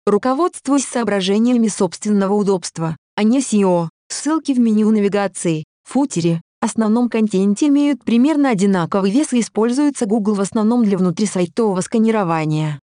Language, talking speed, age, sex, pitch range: Russian, 120 wpm, 20-39, female, 185-240 Hz